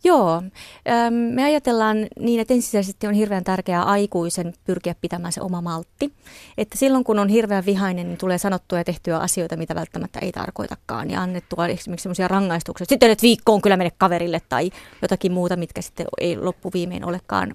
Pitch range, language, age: 175-220 Hz, Finnish, 30-49